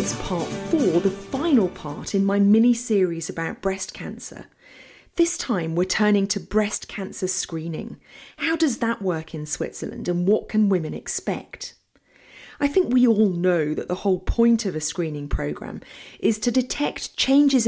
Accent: British